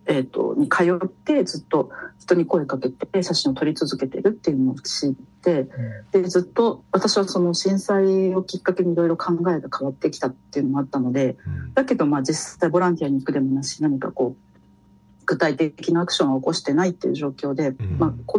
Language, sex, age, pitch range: Japanese, female, 50-69, 135-195 Hz